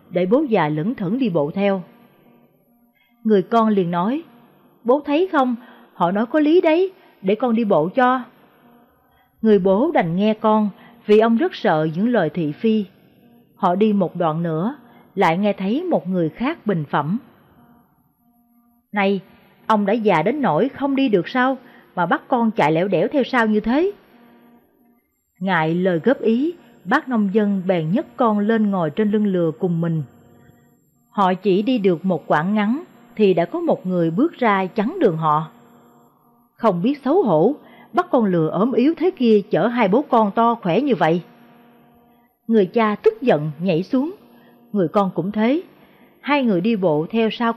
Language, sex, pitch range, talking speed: Vietnamese, female, 190-250 Hz, 175 wpm